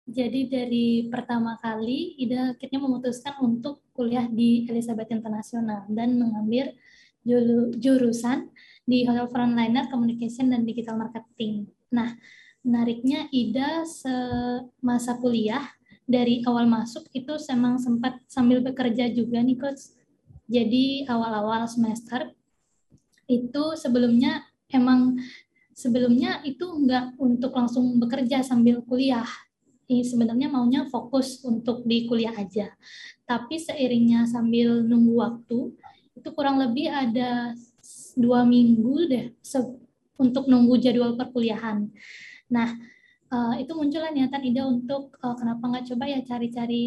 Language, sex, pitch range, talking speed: Indonesian, female, 235-265 Hz, 110 wpm